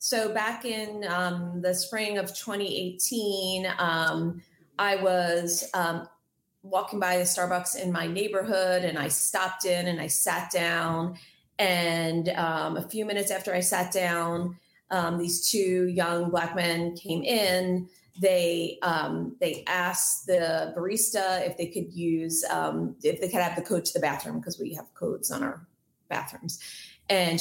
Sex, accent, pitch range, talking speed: female, American, 170-200 Hz, 160 wpm